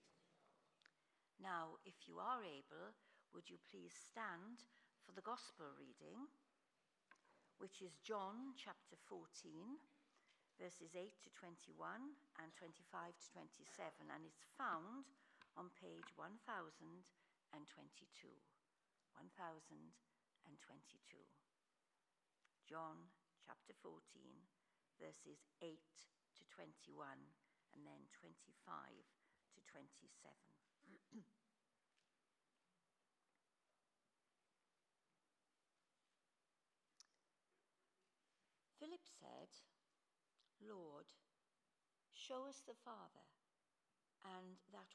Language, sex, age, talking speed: English, female, 60-79, 70 wpm